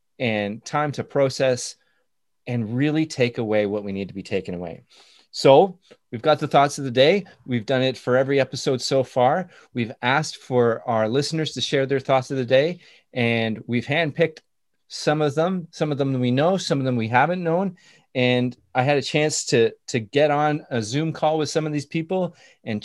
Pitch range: 125-155 Hz